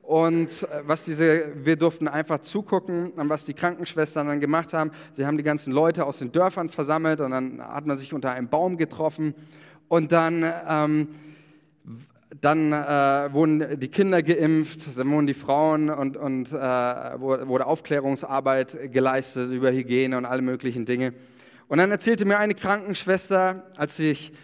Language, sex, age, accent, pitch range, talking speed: German, male, 30-49, German, 135-165 Hz, 155 wpm